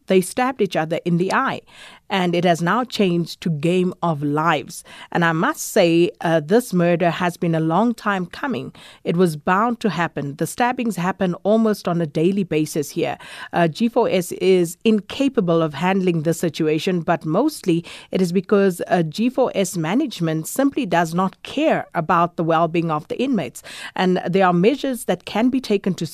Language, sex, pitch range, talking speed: English, female, 170-215 Hz, 180 wpm